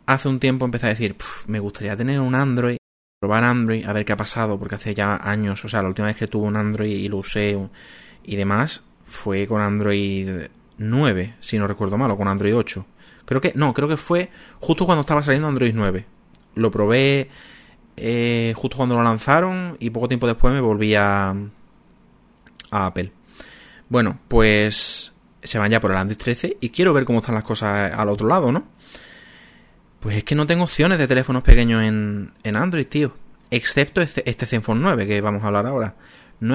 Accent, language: Spanish, Spanish